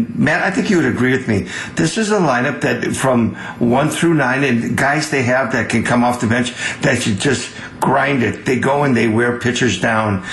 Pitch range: 115-135 Hz